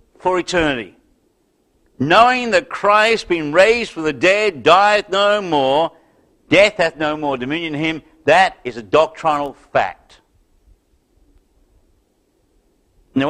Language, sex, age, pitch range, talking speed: English, male, 60-79, 140-210 Hz, 115 wpm